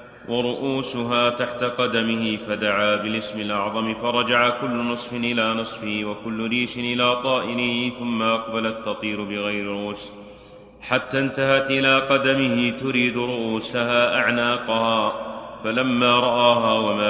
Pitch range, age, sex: 115-125 Hz, 30-49, male